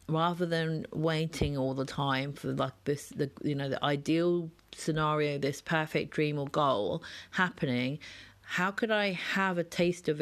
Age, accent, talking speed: 30-49, British, 165 wpm